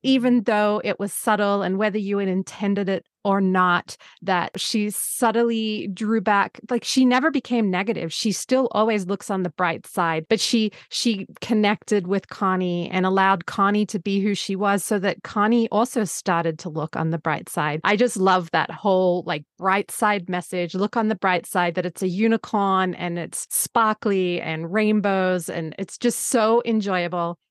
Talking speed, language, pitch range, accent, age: 185 wpm, English, 190-245 Hz, American, 30-49